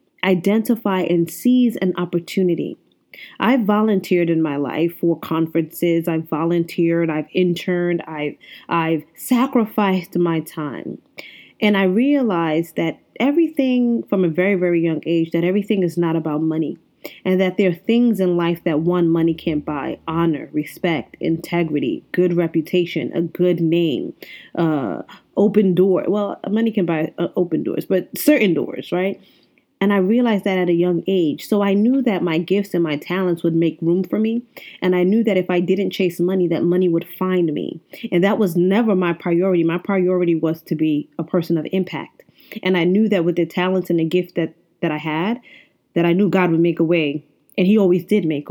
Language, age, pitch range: English, 20-39, 165-205 Hz